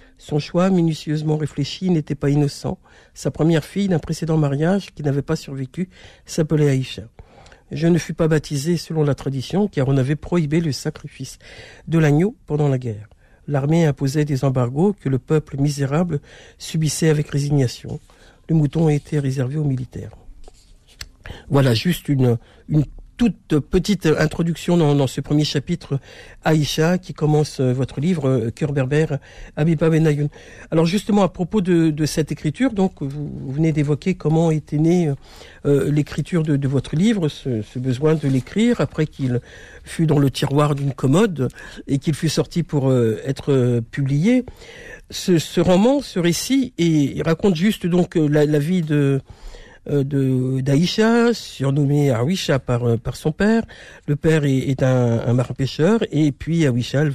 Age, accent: 60-79, French